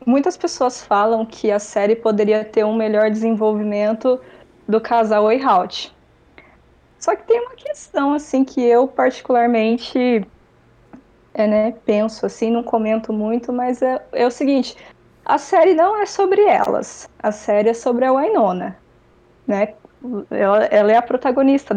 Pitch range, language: 215-255 Hz, Portuguese